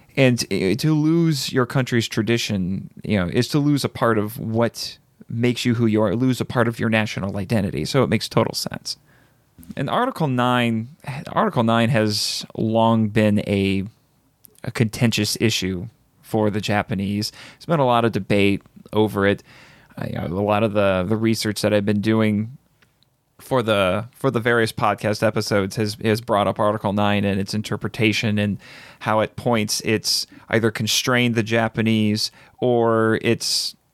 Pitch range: 105-120 Hz